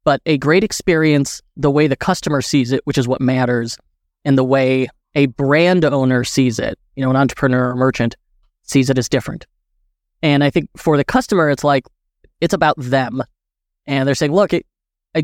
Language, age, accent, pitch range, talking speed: English, 20-39, American, 130-165 Hz, 190 wpm